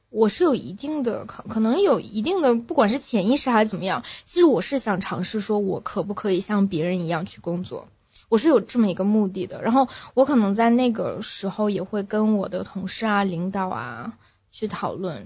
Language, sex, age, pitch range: Chinese, female, 20-39, 190-230 Hz